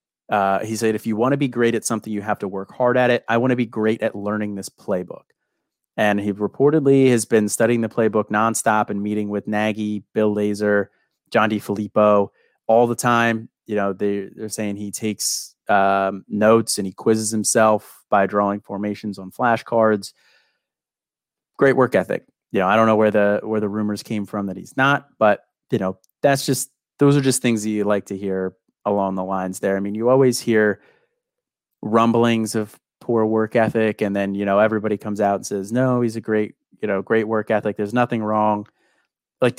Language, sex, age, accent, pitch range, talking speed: English, male, 30-49, American, 100-115 Hz, 205 wpm